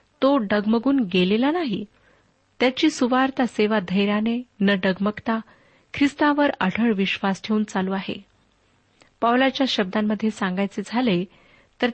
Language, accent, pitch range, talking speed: Marathi, native, 200-250 Hz, 105 wpm